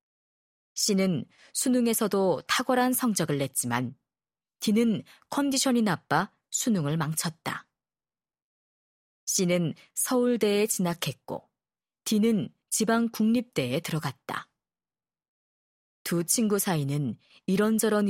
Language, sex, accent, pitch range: Korean, female, native, 155-225 Hz